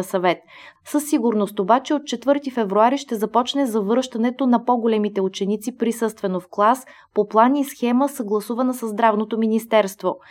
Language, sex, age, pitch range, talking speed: Bulgarian, female, 20-39, 205-250 Hz, 140 wpm